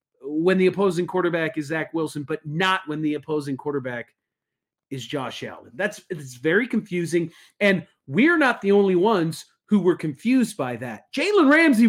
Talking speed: 165 wpm